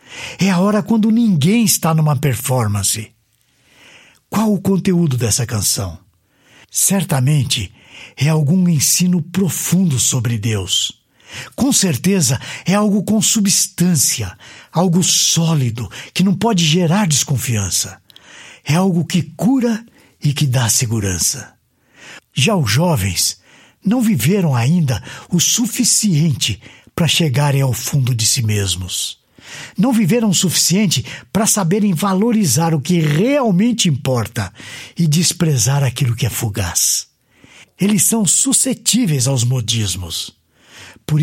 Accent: Brazilian